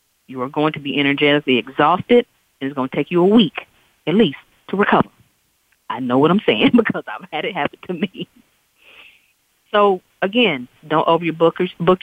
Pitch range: 150-205 Hz